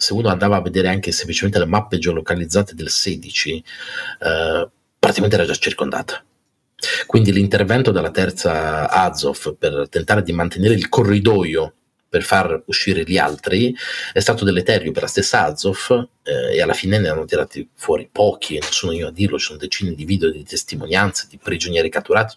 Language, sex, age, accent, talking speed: Italian, male, 30-49, native, 170 wpm